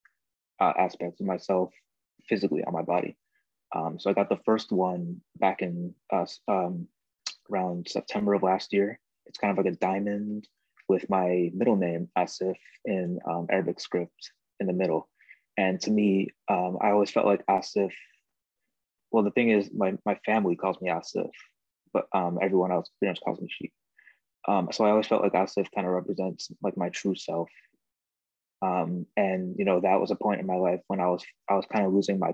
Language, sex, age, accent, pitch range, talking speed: English, male, 20-39, American, 90-95 Hz, 190 wpm